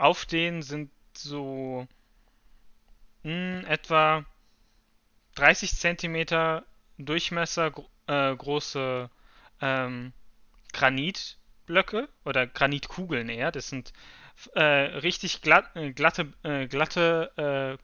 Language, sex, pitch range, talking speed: German, male, 135-160 Hz, 90 wpm